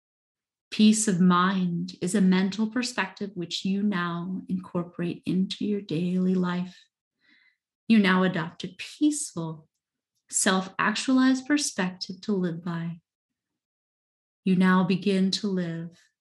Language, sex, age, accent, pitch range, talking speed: English, female, 30-49, American, 175-210 Hz, 110 wpm